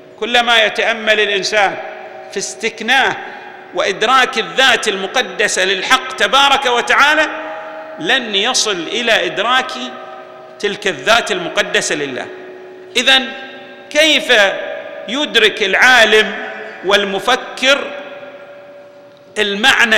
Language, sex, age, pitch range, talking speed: Arabic, male, 50-69, 215-295 Hz, 75 wpm